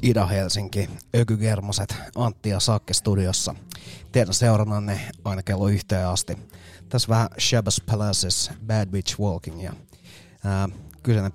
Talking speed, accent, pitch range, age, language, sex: 110 wpm, native, 95-115 Hz, 30-49, Finnish, male